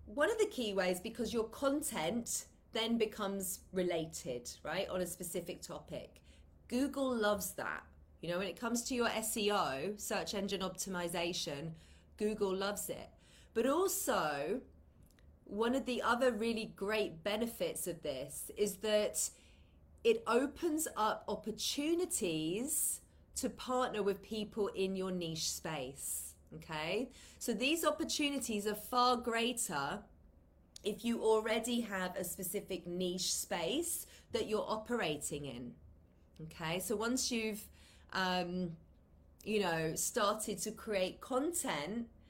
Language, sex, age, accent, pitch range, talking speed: English, female, 30-49, British, 185-245 Hz, 125 wpm